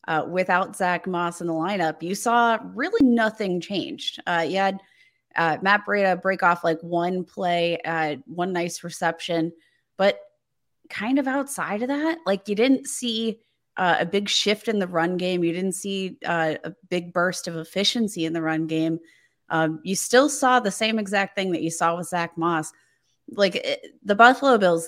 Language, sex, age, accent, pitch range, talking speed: English, female, 20-39, American, 165-200 Hz, 185 wpm